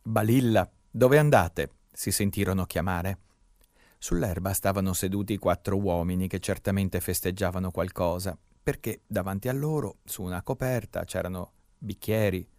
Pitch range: 95-120 Hz